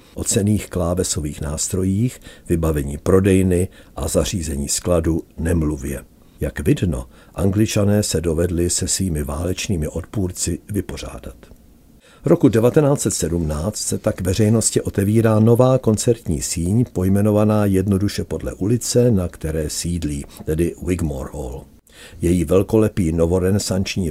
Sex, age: male, 60-79